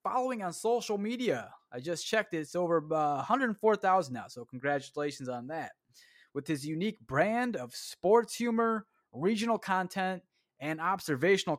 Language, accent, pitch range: English, American, 150-205 Hz